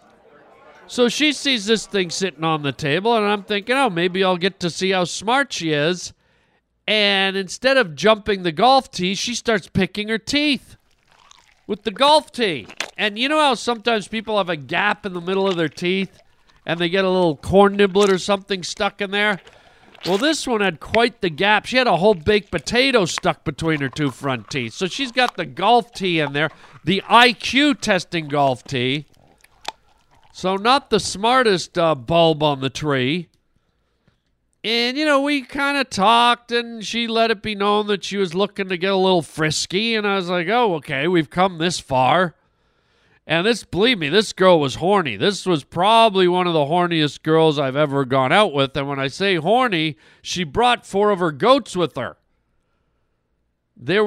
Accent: American